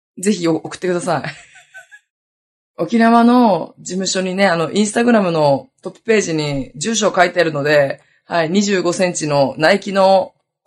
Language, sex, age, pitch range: Japanese, female, 20-39, 155-215 Hz